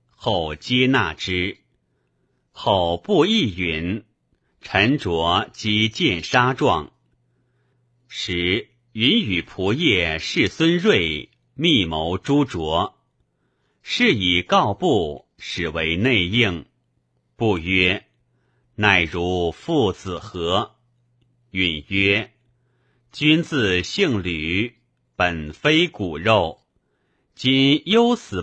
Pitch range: 85-125 Hz